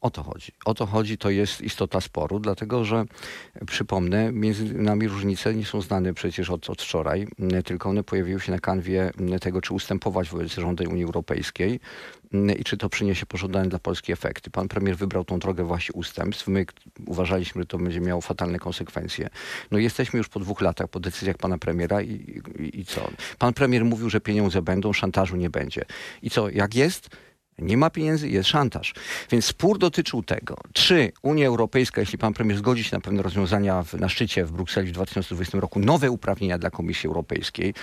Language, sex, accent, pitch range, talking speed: Polish, male, native, 95-115 Hz, 190 wpm